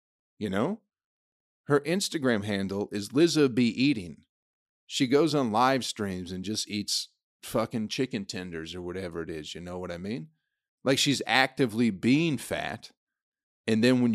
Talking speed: 155 wpm